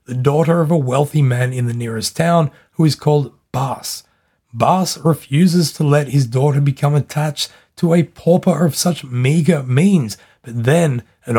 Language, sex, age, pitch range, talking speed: English, male, 30-49, 130-165 Hz, 170 wpm